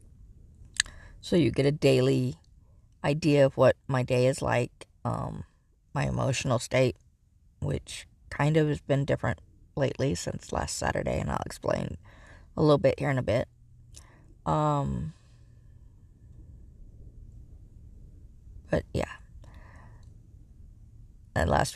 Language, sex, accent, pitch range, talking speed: English, female, American, 100-140 Hz, 115 wpm